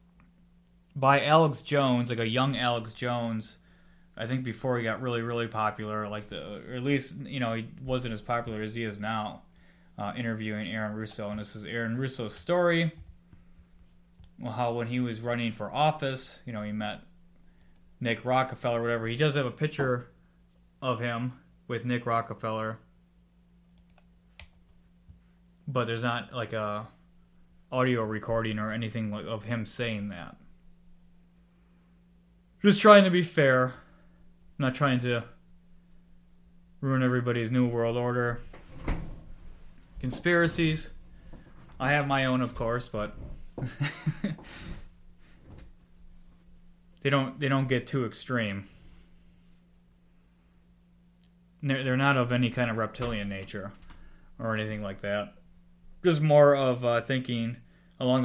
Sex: male